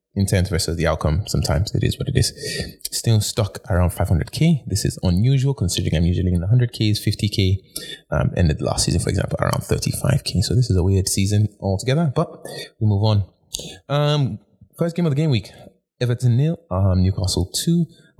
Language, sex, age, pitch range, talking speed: English, male, 20-39, 95-125 Hz, 180 wpm